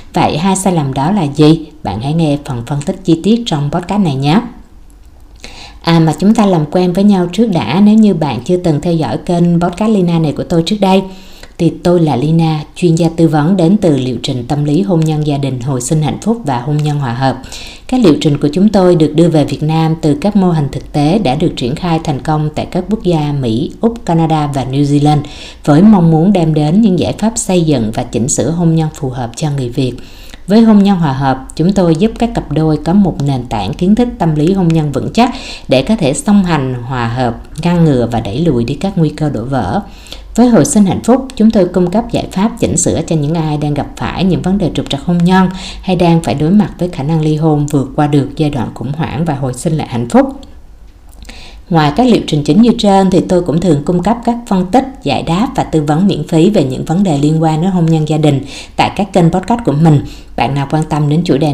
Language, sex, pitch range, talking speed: Vietnamese, female, 145-185 Hz, 255 wpm